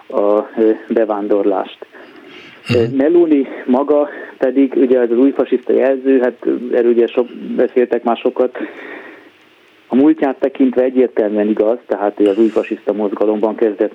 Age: 30-49